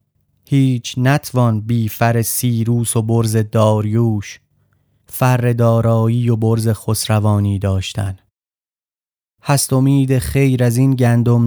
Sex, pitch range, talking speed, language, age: male, 105-125 Hz, 105 wpm, Persian, 30-49